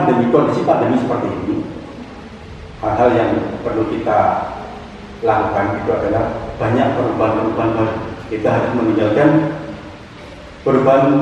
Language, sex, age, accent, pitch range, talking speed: Indonesian, male, 40-59, native, 110-155 Hz, 95 wpm